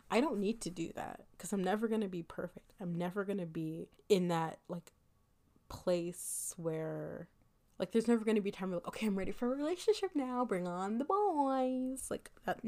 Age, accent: 20-39, American